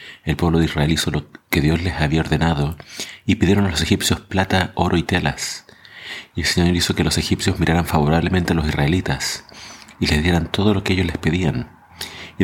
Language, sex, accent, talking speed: Spanish, male, Argentinian, 205 wpm